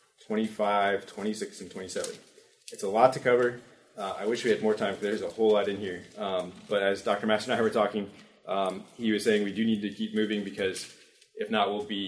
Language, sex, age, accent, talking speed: English, male, 20-39, American, 235 wpm